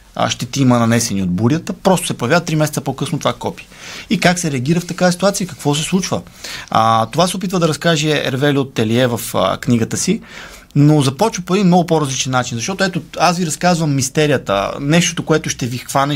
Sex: male